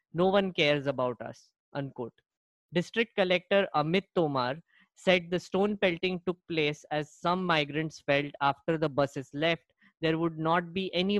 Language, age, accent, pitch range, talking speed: English, 20-39, Indian, 140-175 Hz, 155 wpm